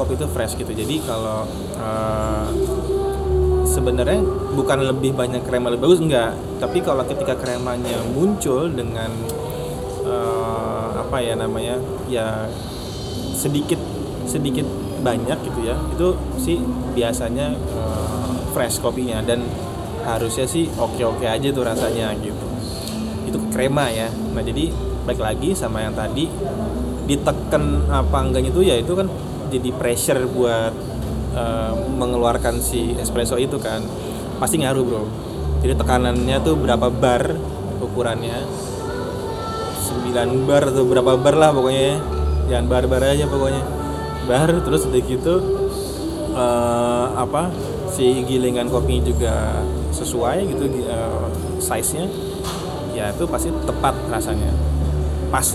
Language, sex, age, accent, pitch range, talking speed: Indonesian, male, 20-39, native, 80-125 Hz, 120 wpm